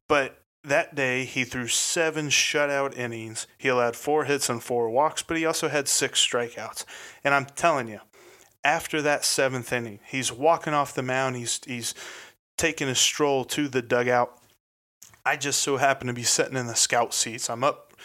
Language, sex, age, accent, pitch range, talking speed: English, male, 30-49, American, 120-145 Hz, 185 wpm